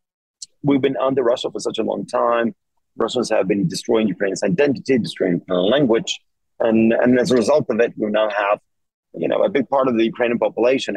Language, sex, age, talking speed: English, male, 40-59, 200 wpm